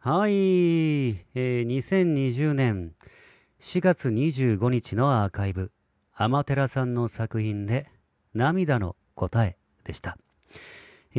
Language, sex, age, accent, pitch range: Japanese, male, 40-59, native, 100-155 Hz